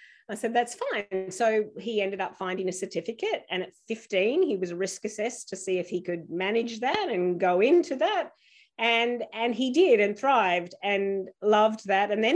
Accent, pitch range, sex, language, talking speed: Australian, 190-240 Hz, female, English, 195 wpm